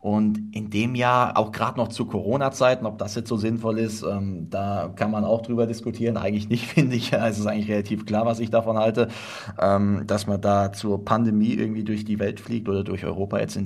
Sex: male